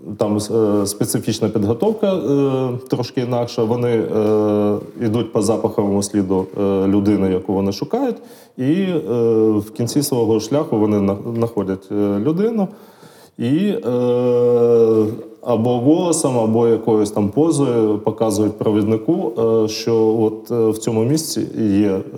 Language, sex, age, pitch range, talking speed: Ukrainian, male, 30-49, 105-130 Hz, 100 wpm